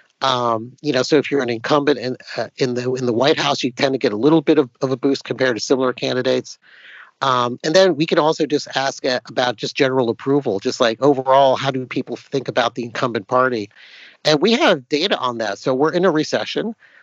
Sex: male